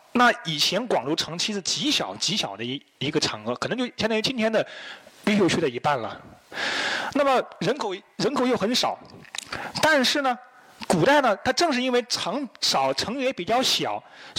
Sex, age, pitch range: male, 30-49, 185-255 Hz